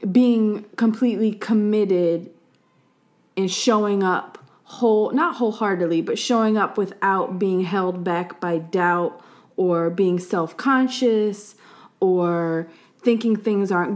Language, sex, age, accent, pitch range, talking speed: English, female, 20-39, American, 190-245 Hz, 110 wpm